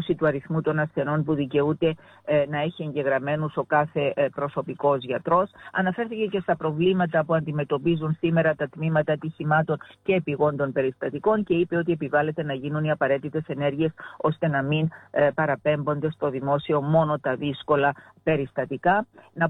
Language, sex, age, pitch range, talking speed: Greek, female, 50-69, 145-170 Hz, 140 wpm